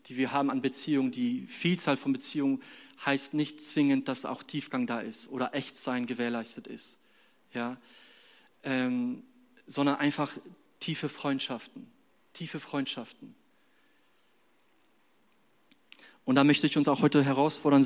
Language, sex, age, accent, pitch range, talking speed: German, male, 40-59, German, 145-205 Hz, 120 wpm